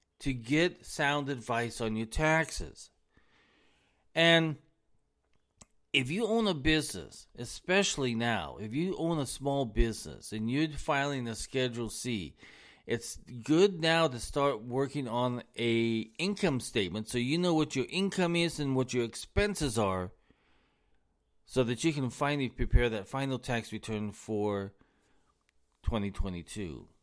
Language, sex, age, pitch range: English, male, 40-59, 110-145 Hz